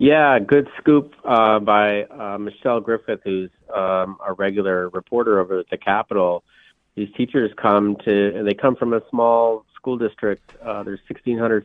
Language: English